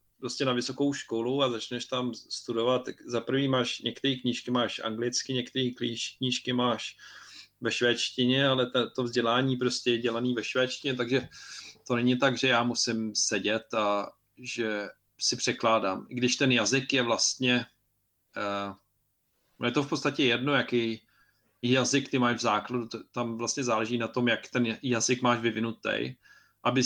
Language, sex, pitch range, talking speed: Czech, male, 115-125 Hz, 150 wpm